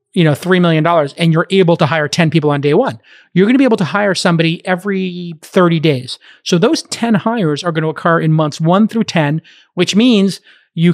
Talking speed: 225 wpm